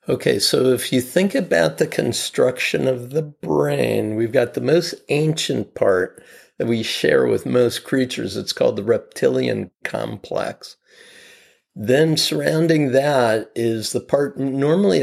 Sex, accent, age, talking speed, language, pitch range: male, American, 50-69, 140 wpm, English, 110-145 Hz